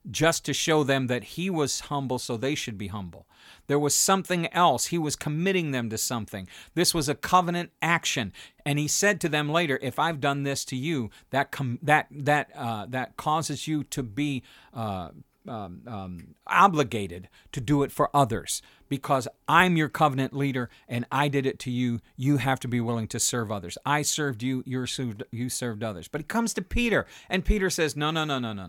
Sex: male